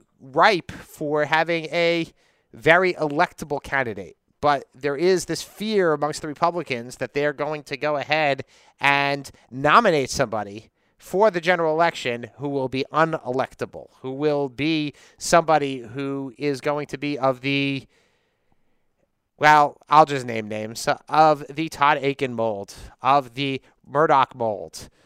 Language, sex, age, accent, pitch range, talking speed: English, male, 30-49, American, 135-165 Hz, 135 wpm